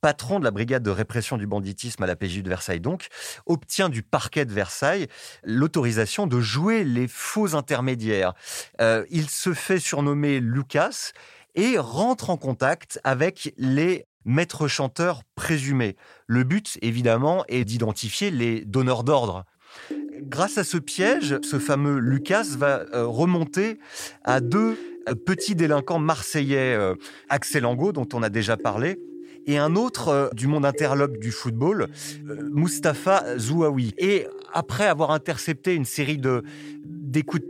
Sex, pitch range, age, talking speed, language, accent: male, 120-170 Hz, 30-49, 140 wpm, French, French